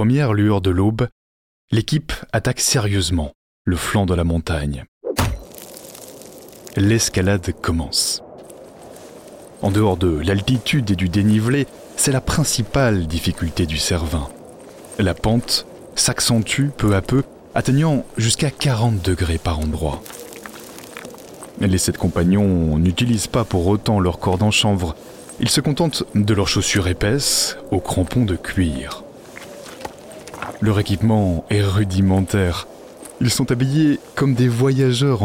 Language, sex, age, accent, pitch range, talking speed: French, male, 20-39, French, 90-120 Hz, 120 wpm